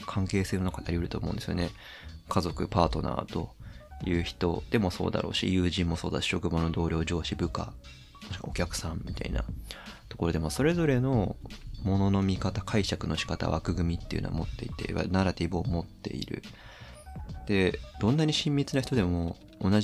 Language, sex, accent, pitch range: Japanese, male, native, 85-110 Hz